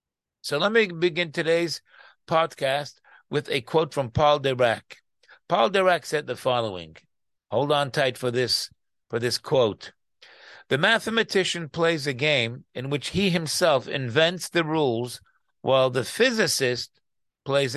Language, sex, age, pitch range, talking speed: English, male, 50-69, 130-170 Hz, 140 wpm